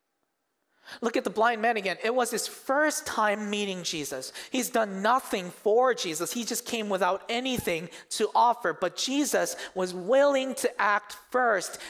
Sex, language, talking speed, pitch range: male, English, 160 wpm, 150-210 Hz